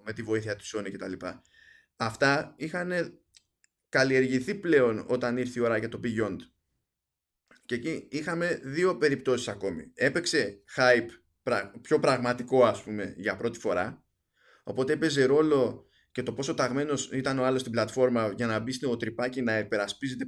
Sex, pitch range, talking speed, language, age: male, 110-145 Hz, 155 wpm, Greek, 20-39